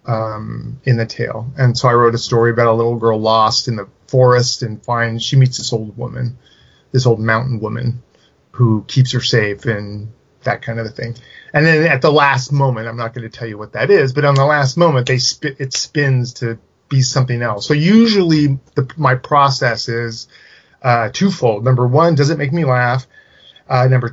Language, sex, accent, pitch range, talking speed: English, male, American, 120-145 Hz, 205 wpm